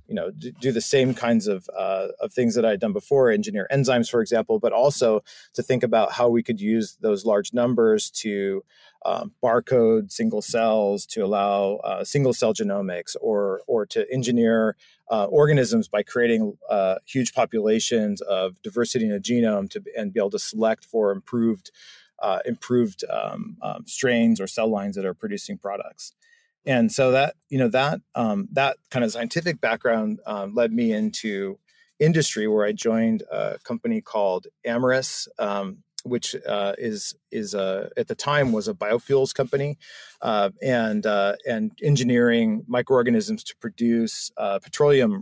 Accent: American